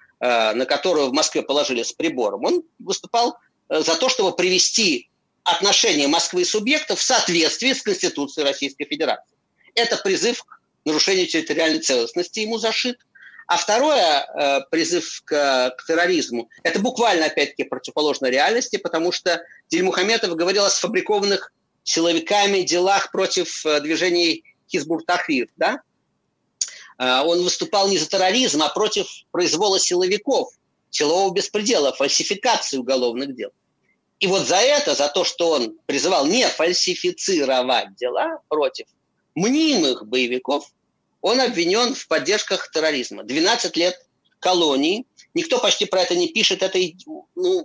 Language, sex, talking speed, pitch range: Russian, male, 125 wpm, 165-260 Hz